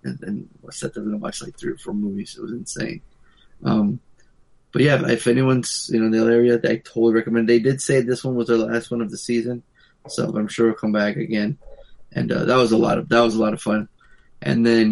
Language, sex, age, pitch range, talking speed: English, male, 20-39, 115-125 Hz, 250 wpm